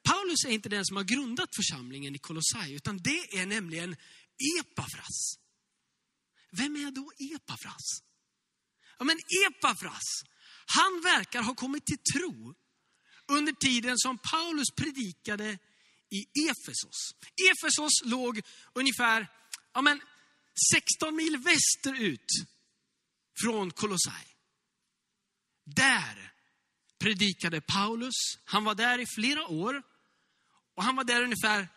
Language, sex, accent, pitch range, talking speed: Swedish, male, native, 205-290 Hz, 110 wpm